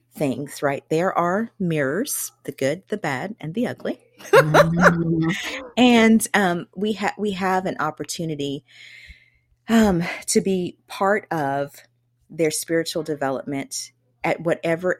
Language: English